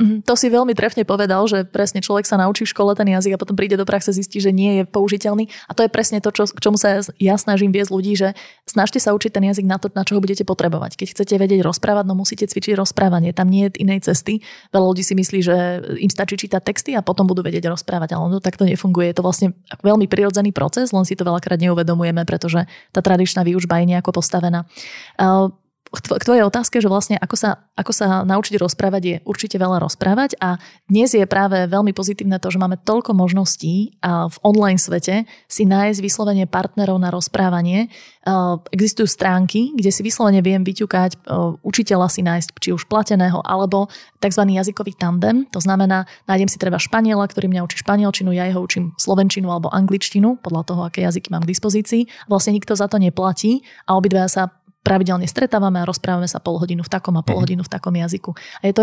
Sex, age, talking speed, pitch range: female, 20-39, 205 wpm, 180-205 Hz